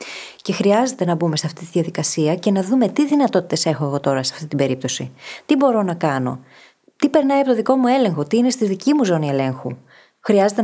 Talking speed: 220 wpm